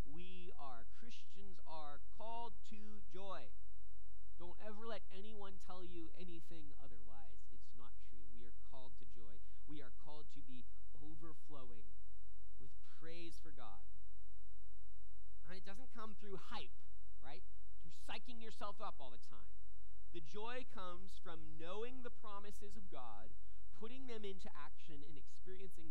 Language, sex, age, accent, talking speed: English, male, 30-49, American, 145 wpm